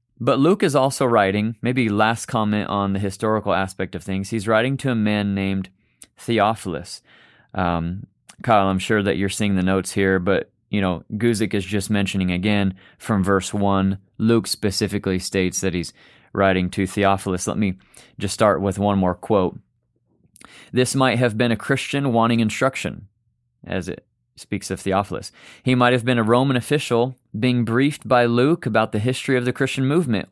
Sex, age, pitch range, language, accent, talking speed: male, 30-49, 95-110 Hz, English, American, 175 wpm